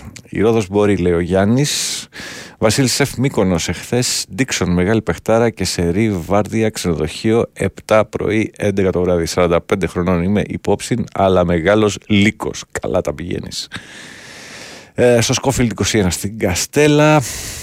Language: Greek